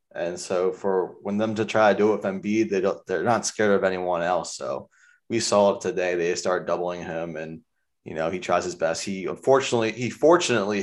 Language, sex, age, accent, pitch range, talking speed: English, male, 20-39, American, 90-115 Hz, 220 wpm